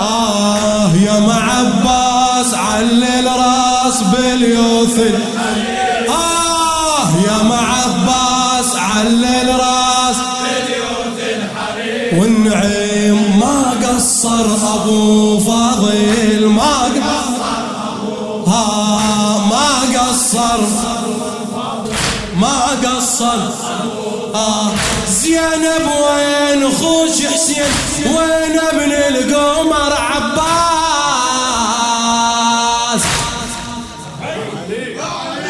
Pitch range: 155-250 Hz